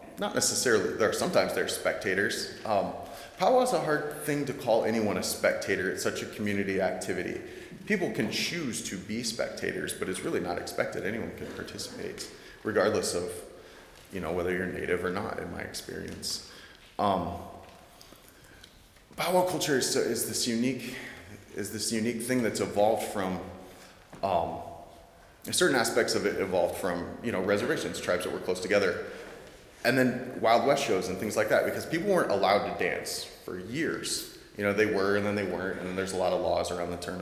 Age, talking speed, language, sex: 30-49, 180 wpm, English, male